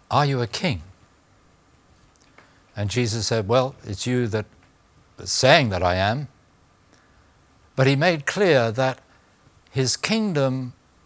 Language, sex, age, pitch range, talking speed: English, male, 60-79, 110-150 Hz, 125 wpm